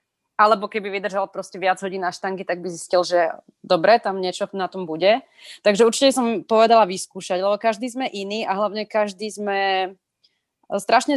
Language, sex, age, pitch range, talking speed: Slovak, female, 20-39, 185-220 Hz, 165 wpm